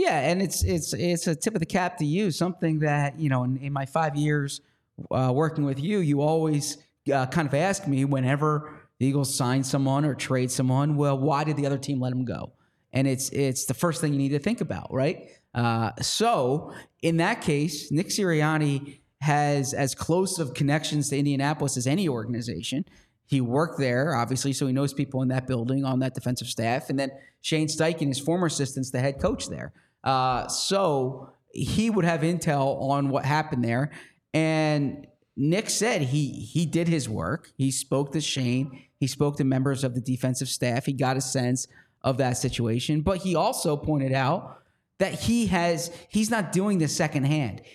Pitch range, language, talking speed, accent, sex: 135-165 Hz, English, 195 wpm, American, male